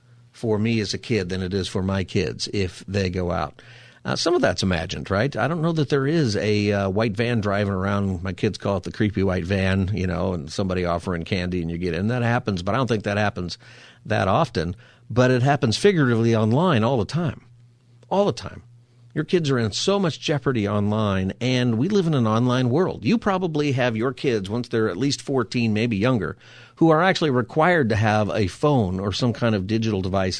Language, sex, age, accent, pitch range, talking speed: English, male, 50-69, American, 95-125 Hz, 225 wpm